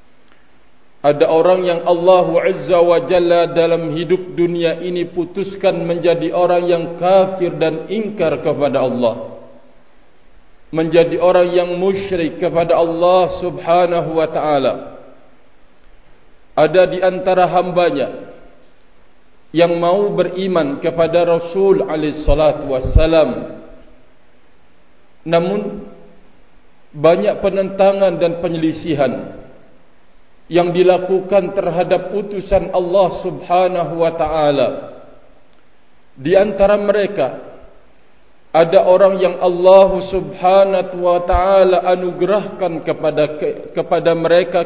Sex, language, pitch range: male, Indonesian, 150-185 Hz